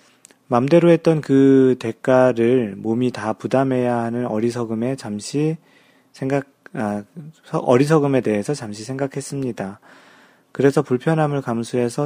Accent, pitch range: native, 110-140 Hz